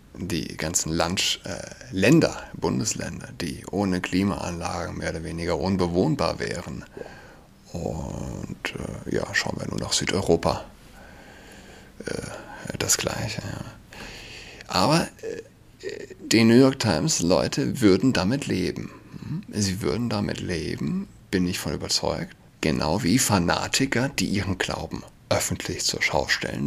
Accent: German